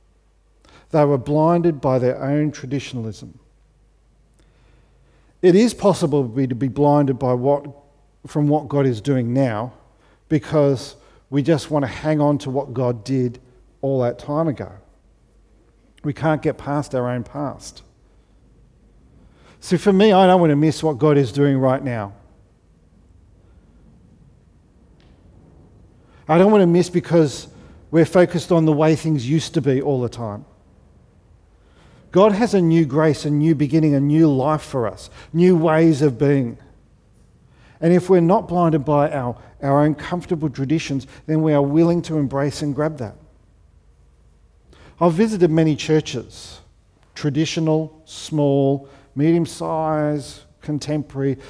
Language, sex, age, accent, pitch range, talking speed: English, male, 50-69, Australian, 110-155 Hz, 140 wpm